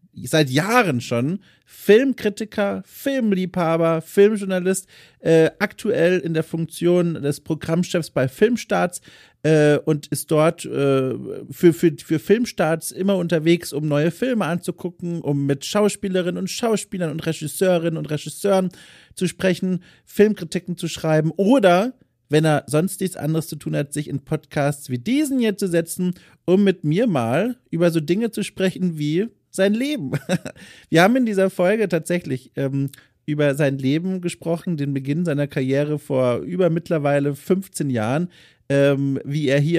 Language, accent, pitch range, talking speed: German, German, 150-190 Hz, 145 wpm